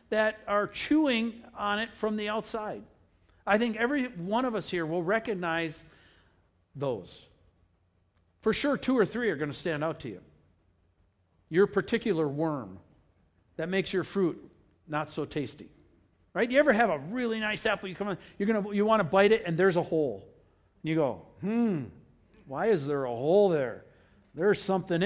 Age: 60-79